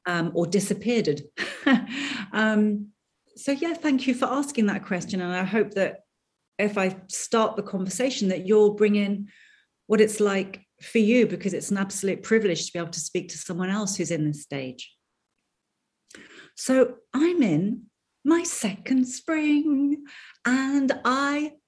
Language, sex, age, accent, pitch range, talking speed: English, female, 40-59, British, 185-250 Hz, 150 wpm